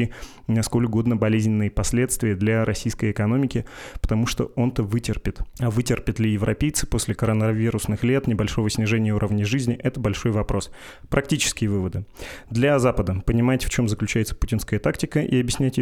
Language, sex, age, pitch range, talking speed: Russian, male, 20-39, 105-120 Hz, 140 wpm